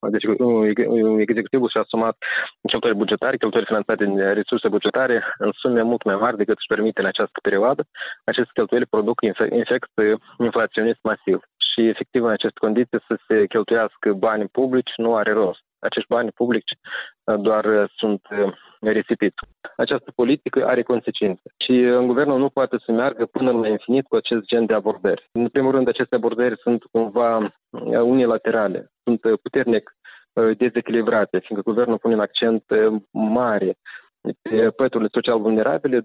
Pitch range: 110-125 Hz